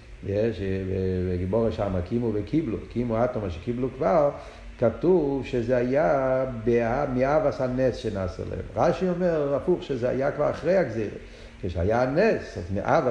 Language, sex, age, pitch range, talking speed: Hebrew, male, 50-69, 95-135 Hz, 135 wpm